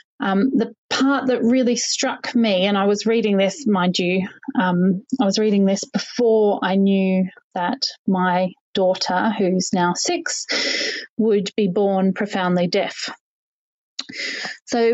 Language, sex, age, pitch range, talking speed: English, female, 30-49, 195-250 Hz, 135 wpm